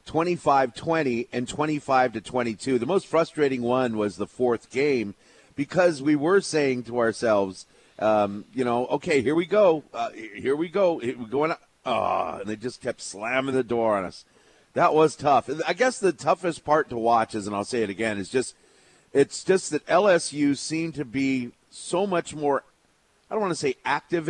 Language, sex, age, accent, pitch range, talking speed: English, male, 40-59, American, 115-155 Hz, 185 wpm